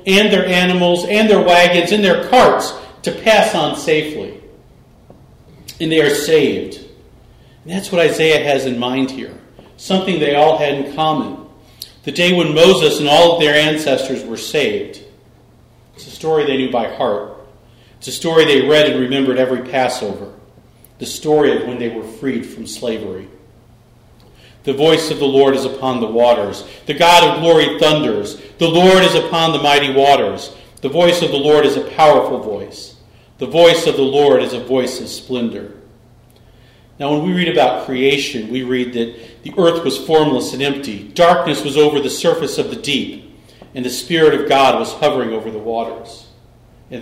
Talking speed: 180 wpm